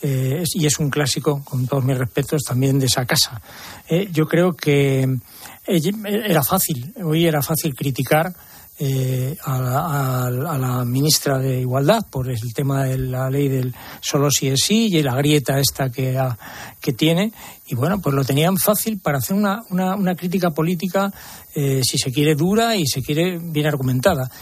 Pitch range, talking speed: 135-165 Hz, 180 wpm